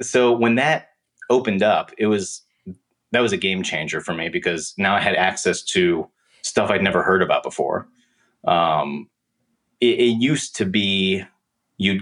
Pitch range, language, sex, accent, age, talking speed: 85-105 Hz, English, male, American, 30-49, 165 wpm